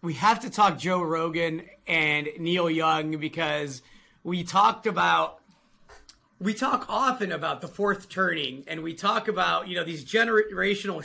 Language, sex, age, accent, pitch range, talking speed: English, male, 30-49, American, 170-225 Hz, 150 wpm